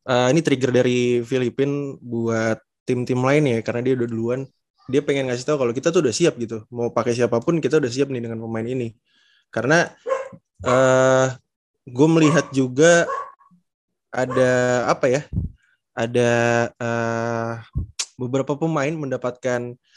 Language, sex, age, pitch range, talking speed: Indonesian, male, 20-39, 115-135 Hz, 140 wpm